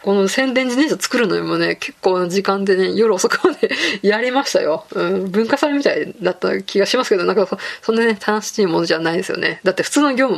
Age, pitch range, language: 20-39, 185-230 Hz, Japanese